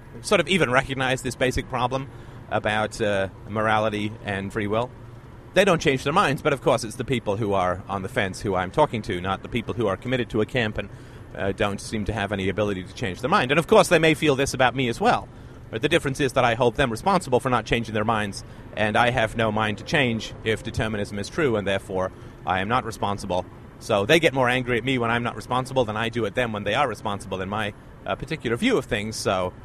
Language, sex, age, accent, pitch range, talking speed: English, male, 30-49, American, 110-140 Hz, 250 wpm